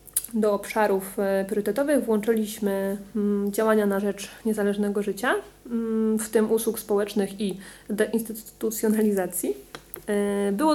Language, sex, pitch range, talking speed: Polish, female, 200-220 Hz, 90 wpm